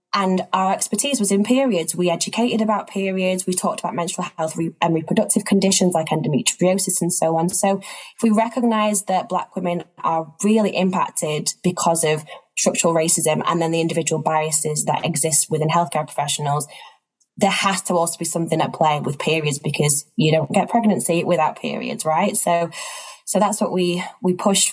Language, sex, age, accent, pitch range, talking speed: English, female, 10-29, British, 165-195 Hz, 175 wpm